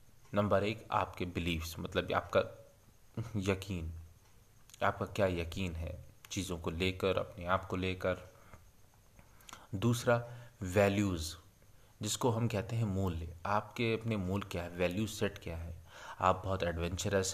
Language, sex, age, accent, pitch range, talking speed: Hindi, male, 30-49, native, 90-110 Hz, 130 wpm